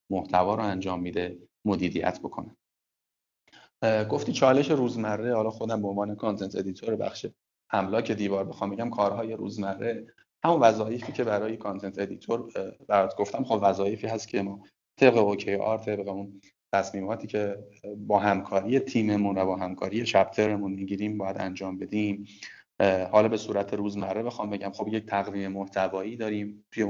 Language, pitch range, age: Persian, 100-110 Hz, 30-49